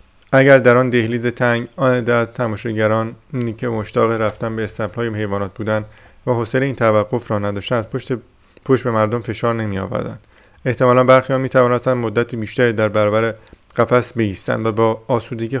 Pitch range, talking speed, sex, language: 110-125 Hz, 155 wpm, male, Persian